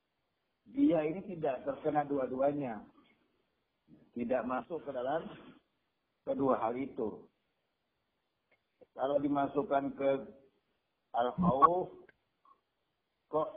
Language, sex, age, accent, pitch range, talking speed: Indonesian, male, 50-69, native, 120-170 Hz, 75 wpm